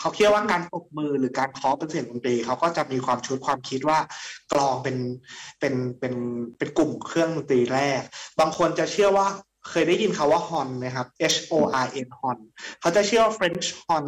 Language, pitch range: Thai, 135-185 Hz